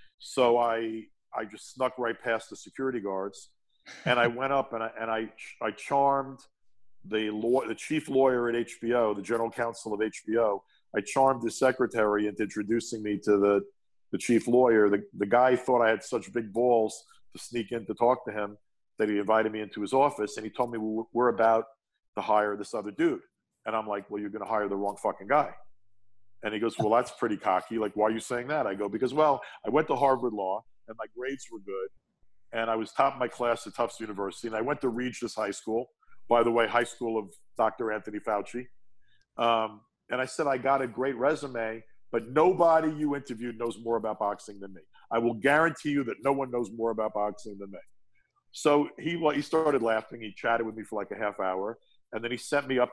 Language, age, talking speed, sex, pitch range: English, 50-69, 220 wpm, male, 110-130 Hz